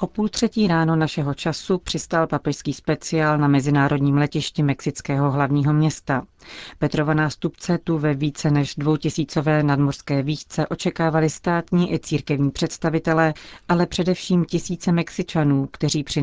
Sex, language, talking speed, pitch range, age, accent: female, Czech, 130 wpm, 145-165 Hz, 40-59, native